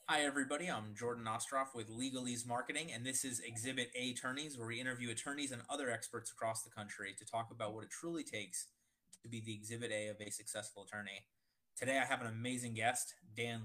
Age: 20-39